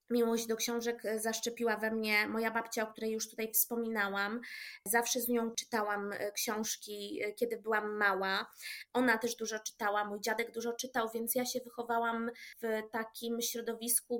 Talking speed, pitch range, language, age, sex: 150 wpm, 220-245 Hz, Polish, 20-39, female